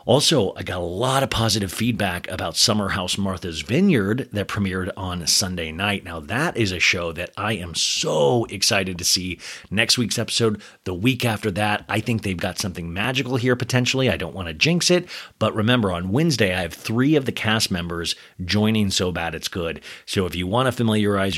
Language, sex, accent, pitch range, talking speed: English, male, American, 95-130 Hz, 205 wpm